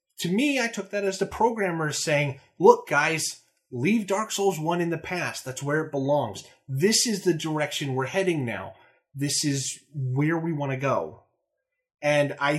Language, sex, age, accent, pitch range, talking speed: English, male, 30-49, American, 125-180 Hz, 180 wpm